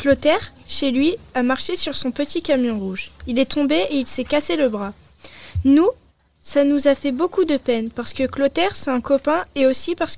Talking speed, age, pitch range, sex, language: 210 wpm, 20-39, 255-305 Hz, female, French